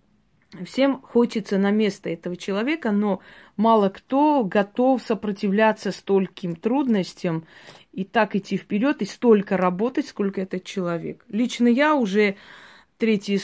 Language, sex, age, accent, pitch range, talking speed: Russian, female, 30-49, native, 180-225 Hz, 120 wpm